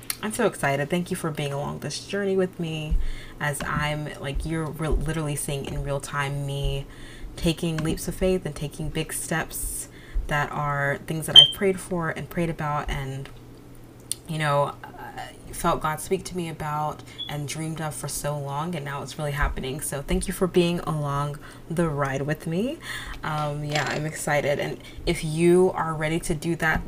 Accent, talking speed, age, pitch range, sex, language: American, 190 wpm, 20-39, 145-175 Hz, female, English